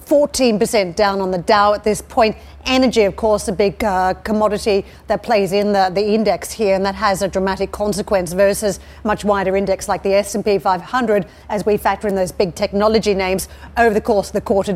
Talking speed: 205 wpm